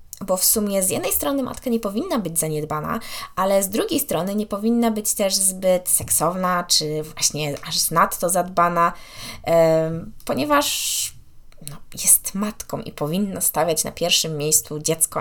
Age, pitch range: 20-39, 165-230 Hz